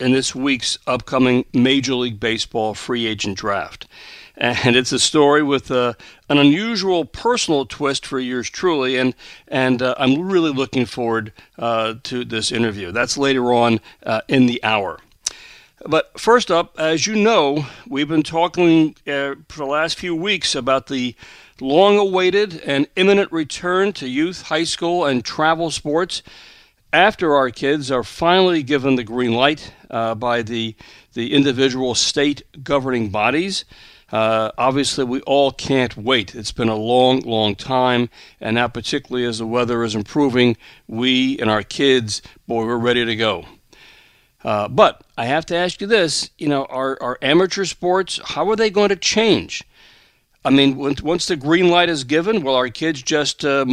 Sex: male